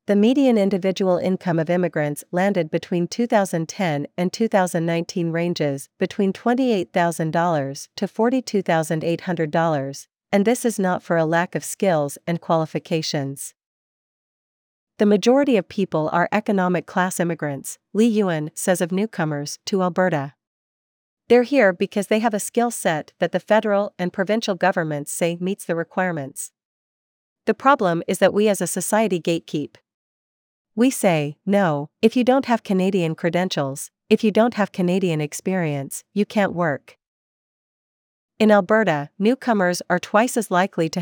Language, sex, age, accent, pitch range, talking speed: English, female, 40-59, American, 165-205 Hz, 140 wpm